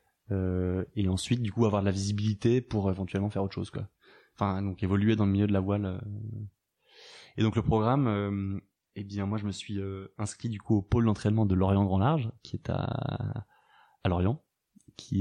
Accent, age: French, 20-39